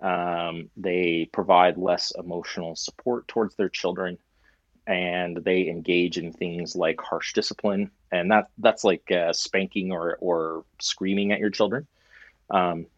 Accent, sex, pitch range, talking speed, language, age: American, male, 85-100 Hz, 140 wpm, English, 30-49